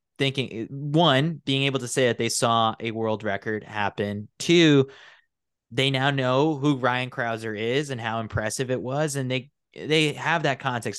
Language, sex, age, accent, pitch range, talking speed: English, male, 20-39, American, 110-135 Hz, 175 wpm